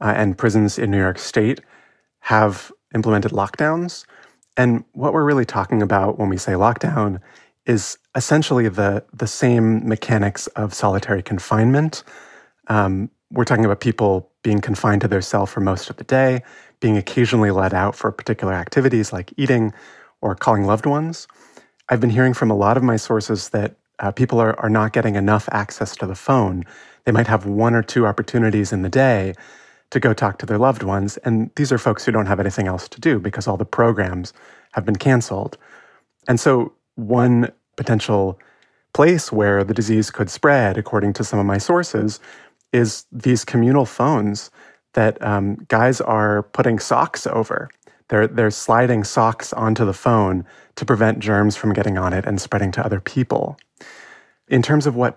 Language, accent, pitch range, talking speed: English, American, 100-125 Hz, 175 wpm